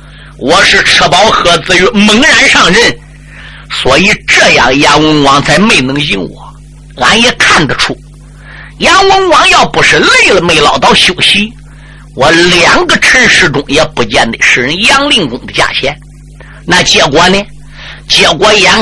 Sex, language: male, Chinese